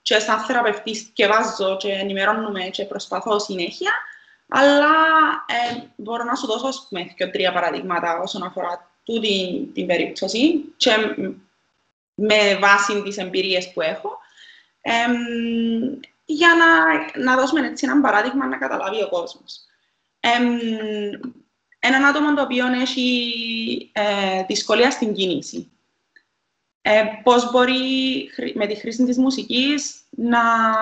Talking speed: 115 wpm